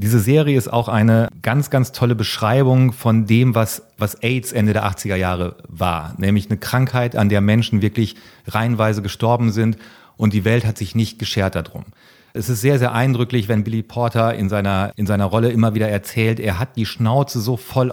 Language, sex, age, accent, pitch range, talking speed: German, male, 40-59, German, 105-125 Hz, 200 wpm